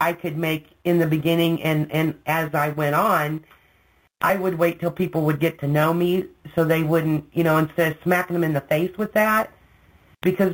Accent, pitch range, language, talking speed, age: American, 150-185 Hz, English, 210 wpm, 40-59